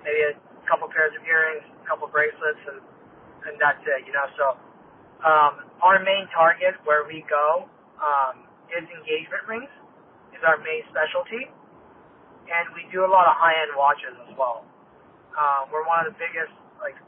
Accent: American